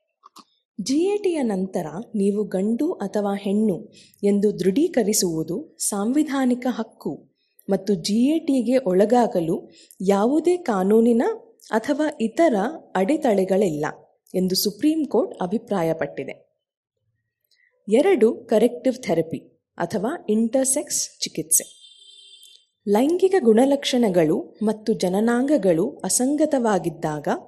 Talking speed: 80 wpm